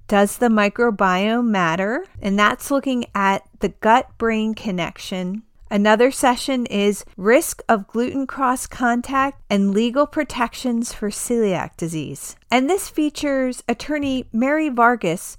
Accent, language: American, English